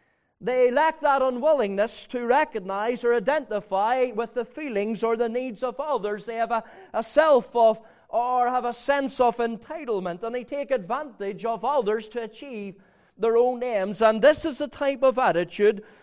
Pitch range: 200-250 Hz